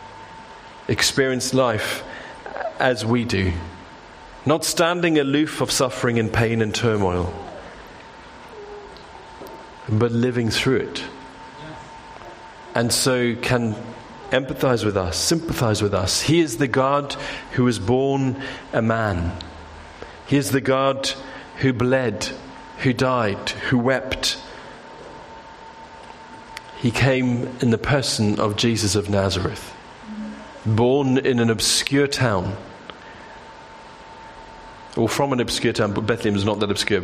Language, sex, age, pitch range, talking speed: English, male, 40-59, 105-135 Hz, 115 wpm